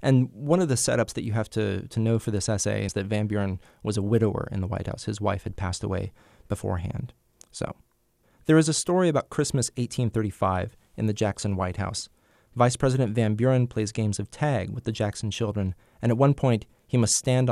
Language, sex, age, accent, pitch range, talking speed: English, male, 30-49, American, 105-125 Hz, 215 wpm